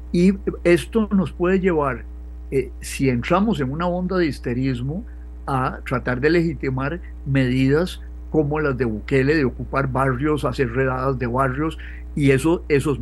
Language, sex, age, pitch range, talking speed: Spanish, male, 50-69, 125-175 Hz, 150 wpm